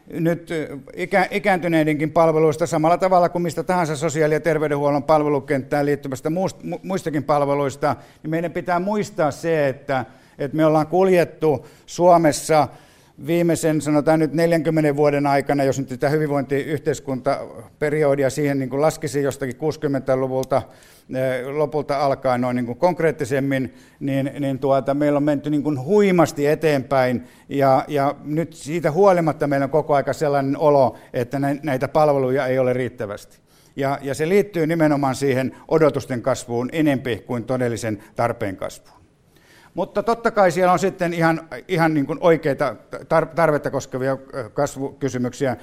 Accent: native